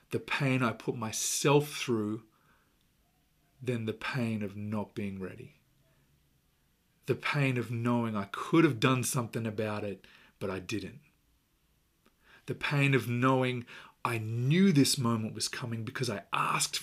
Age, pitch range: 30-49, 110-135 Hz